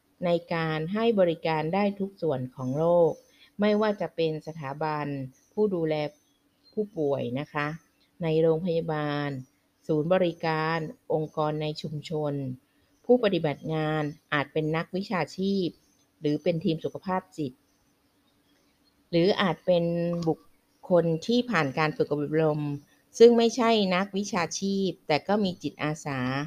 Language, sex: Thai, female